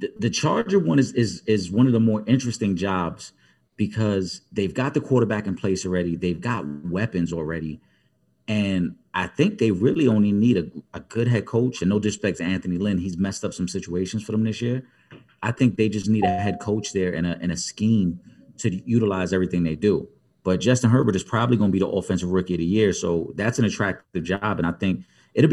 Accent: American